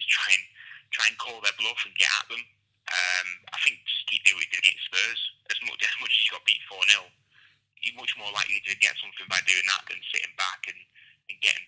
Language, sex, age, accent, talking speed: English, male, 20-39, British, 230 wpm